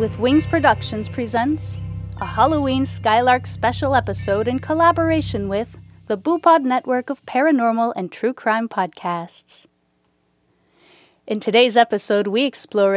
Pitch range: 180-250 Hz